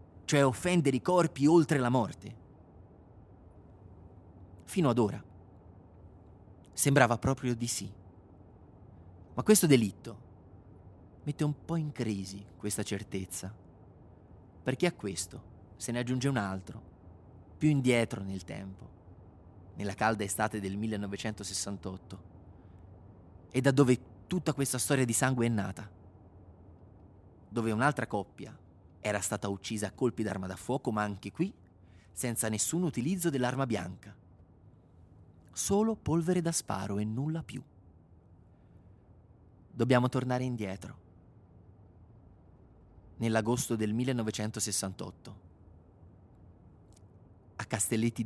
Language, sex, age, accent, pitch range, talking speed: Italian, male, 30-49, native, 95-120 Hz, 105 wpm